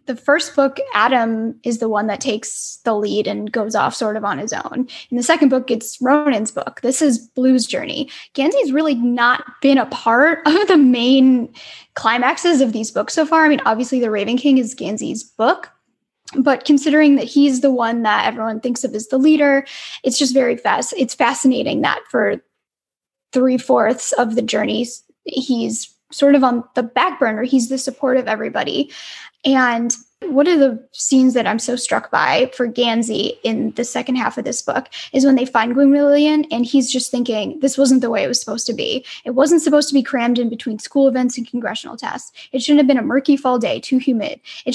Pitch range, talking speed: 235-280 Hz, 205 wpm